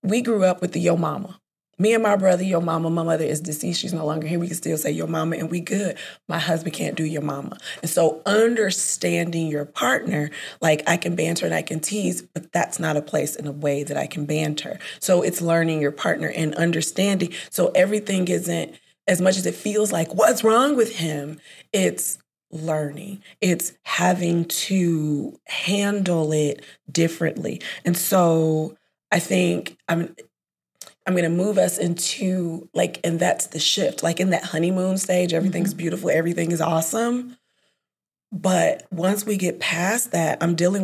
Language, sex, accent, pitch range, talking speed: English, female, American, 160-190 Hz, 180 wpm